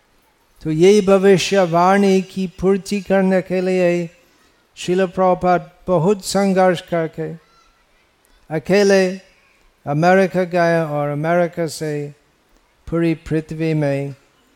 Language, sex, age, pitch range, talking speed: Hindi, male, 50-69, 150-185 Hz, 90 wpm